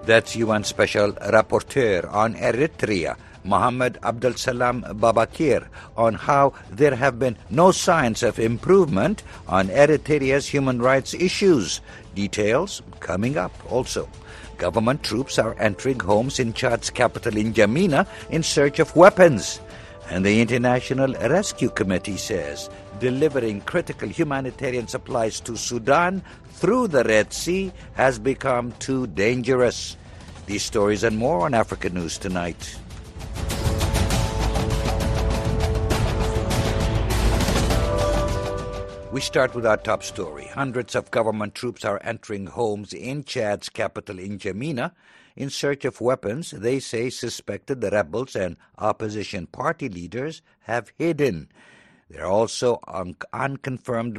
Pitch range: 100-135 Hz